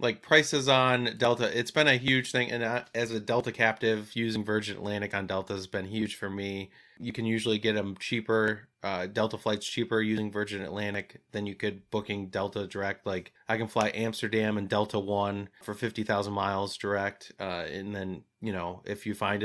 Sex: male